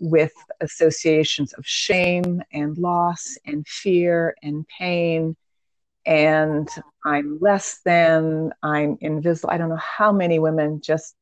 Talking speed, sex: 125 wpm, female